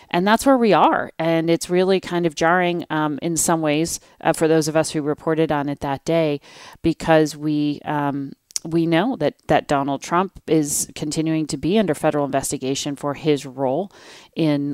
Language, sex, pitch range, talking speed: English, female, 140-165 Hz, 185 wpm